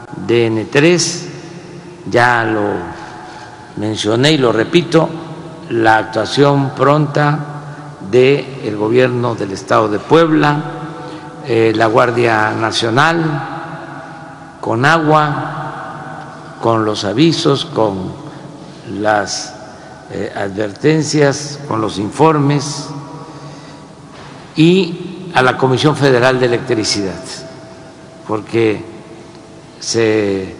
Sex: male